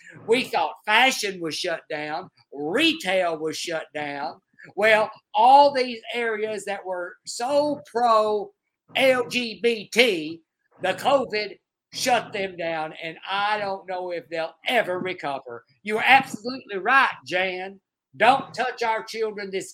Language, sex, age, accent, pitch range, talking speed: English, male, 50-69, American, 160-225 Hz, 120 wpm